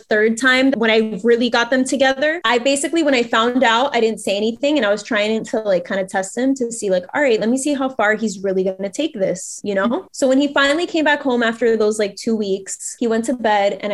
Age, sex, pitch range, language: 20-39, female, 195-245 Hz, English